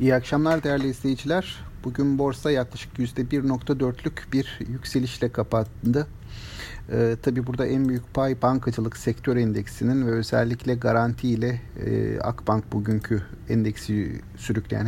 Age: 50-69